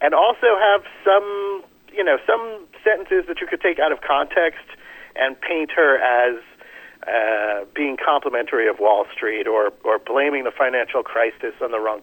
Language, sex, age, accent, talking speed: English, male, 50-69, American, 170 wpm